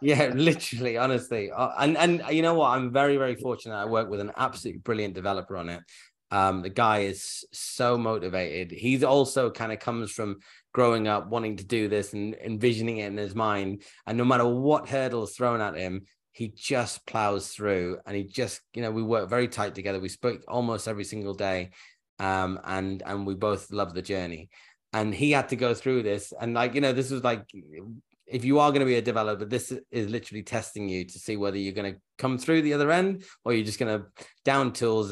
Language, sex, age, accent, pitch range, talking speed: English, male, 20-39, British, 100-125 Hz, 215 wpm